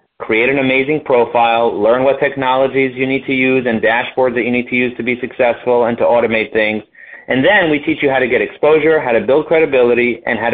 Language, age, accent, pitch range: English, 40-59, American, 120-150 Hz